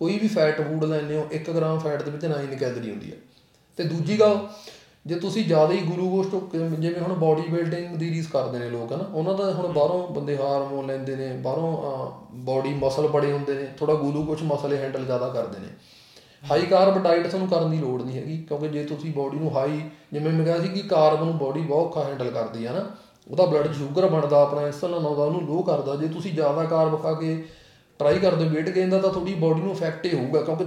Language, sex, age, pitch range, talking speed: Punjabi, male, 30-49, 150-180 Hz, 200 wpm